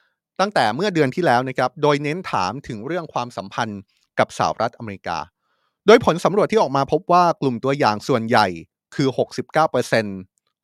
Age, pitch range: 30-49, 115-155 Hz